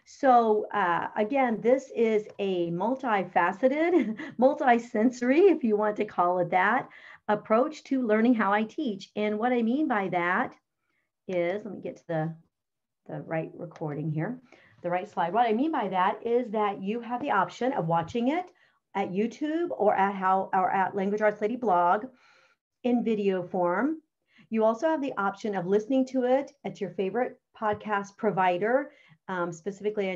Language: English